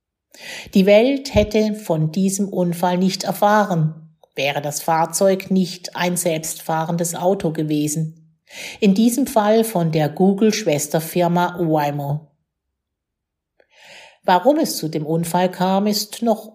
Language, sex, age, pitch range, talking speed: German, female, 50-69, 155-195 Hz, 110 wpm